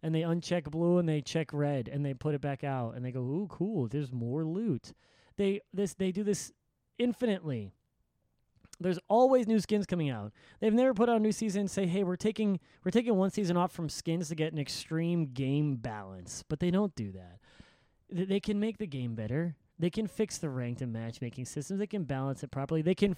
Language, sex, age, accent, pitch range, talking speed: English, male, 30-49, American, 120-170 Hz, 220 wpm